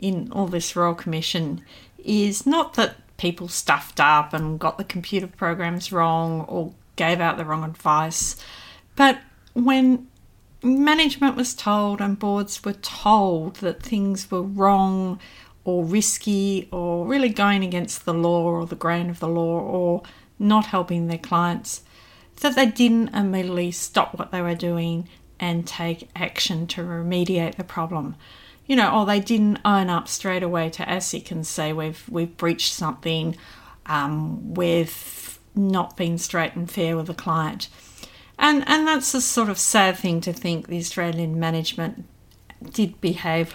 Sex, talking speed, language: female, 155 wpm, English